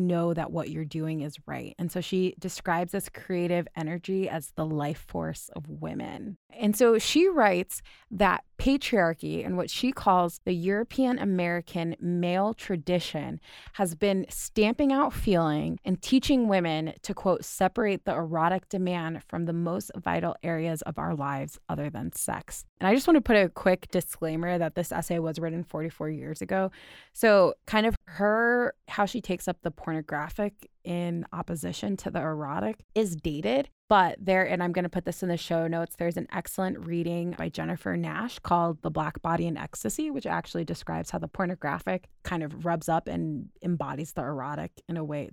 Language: English